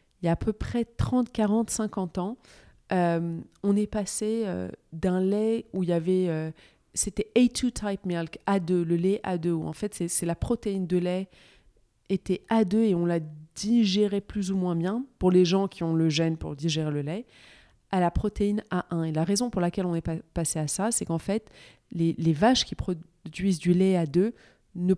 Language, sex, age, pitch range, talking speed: French, female, 30-49, 170-205 Hz, 210 wpm